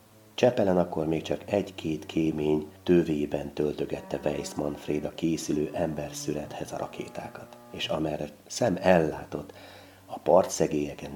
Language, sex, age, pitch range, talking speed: Hungarian, male, 30-49, 75-125 Hz, 115 wpm